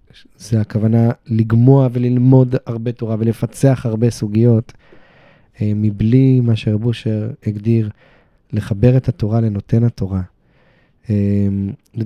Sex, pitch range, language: male, 105-120 Hz, Hebrew